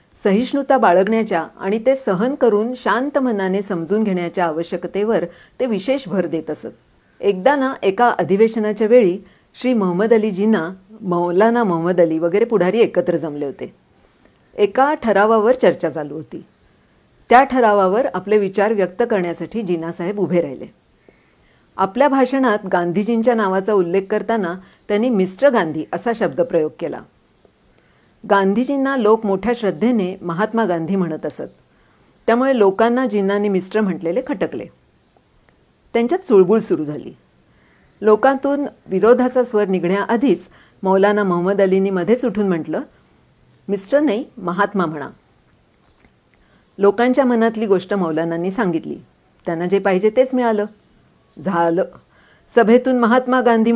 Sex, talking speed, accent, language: female, 120 wpm, native, Marathi